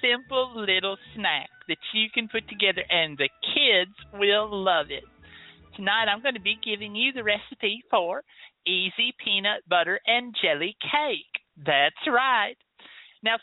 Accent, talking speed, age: American, 150 wpm, 50-69